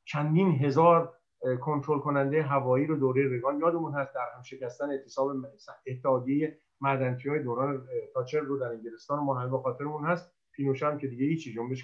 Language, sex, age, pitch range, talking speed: Persian, male, 50-69, 145-200 Hz, 155 wpm